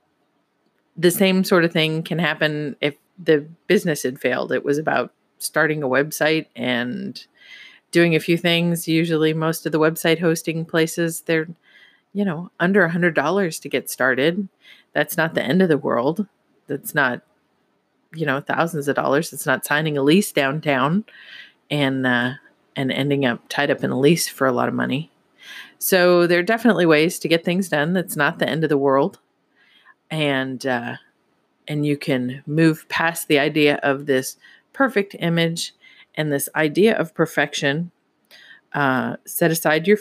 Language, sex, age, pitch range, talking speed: English, female, 30-49, 145-170 Hz, 165 wpm